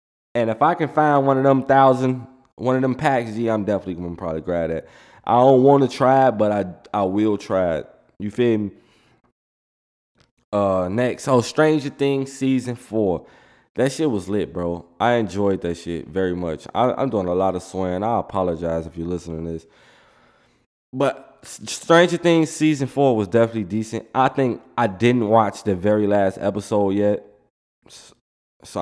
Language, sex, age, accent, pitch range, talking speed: English, male, 20-39, American, 90-115 Hz, 180 wpm